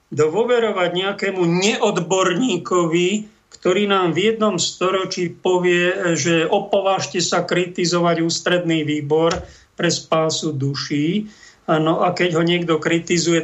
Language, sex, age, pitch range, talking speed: Slovak, male, 50-69, 155-180 Hz, 105 wpm